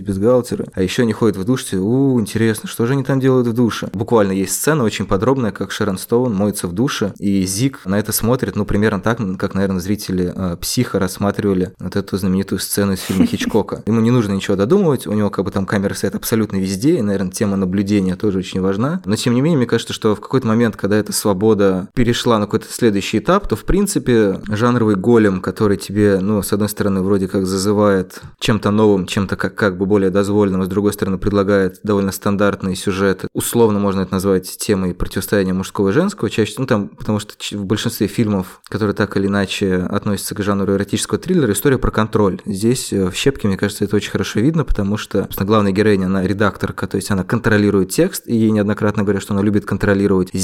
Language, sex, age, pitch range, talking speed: Russian, male, 20-39, 100-110 Hz, 205 wpm